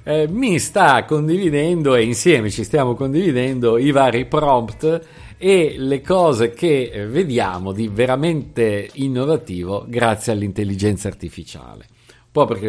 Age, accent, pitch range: 50-69, native, 105-155 Hz